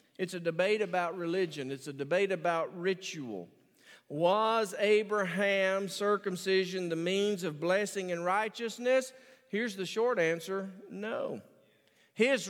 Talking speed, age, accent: 120 wpm, 50-69, American